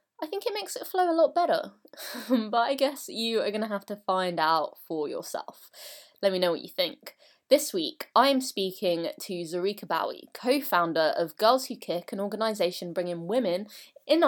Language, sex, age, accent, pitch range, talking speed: English, female, 20-39, British, 175-270 Hz, 185 wpm